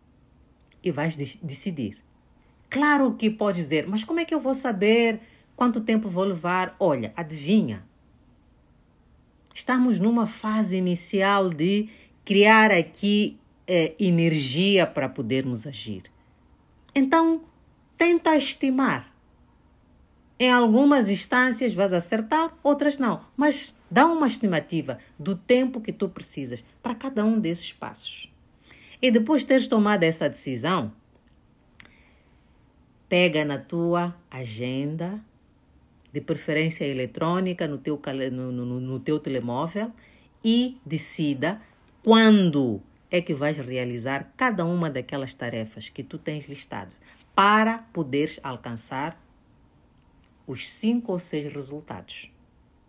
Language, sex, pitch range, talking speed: Portuguese, female, 135-225 Hz, 110 wpm